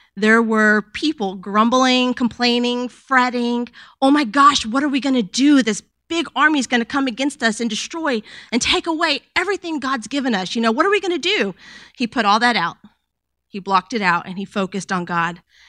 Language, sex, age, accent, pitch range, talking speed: English, female, 30-49, American, 205-270 Hz, 210 wpm